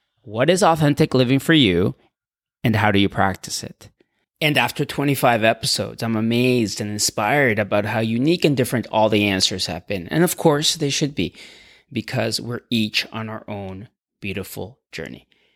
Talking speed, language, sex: 170 wpm, English, male